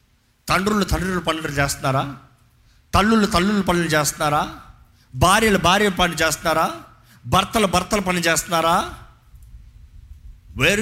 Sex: male